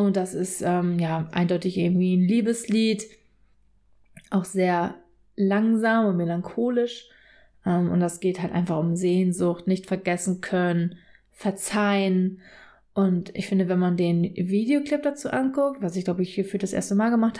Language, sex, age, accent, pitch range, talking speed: German, female, 20-39, German, 180-220 Hz, 155 wpm